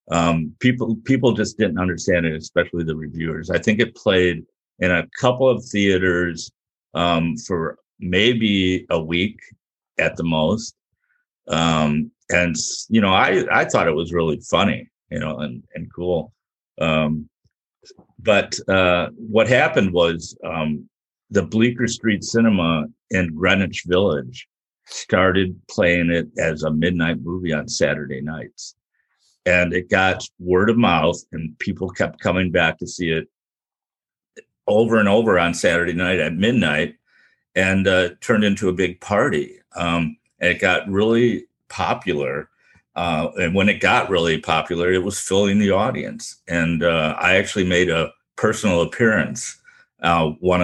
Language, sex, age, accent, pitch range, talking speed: English, male, 50-69, American, 80-100 Hz, 145 wpm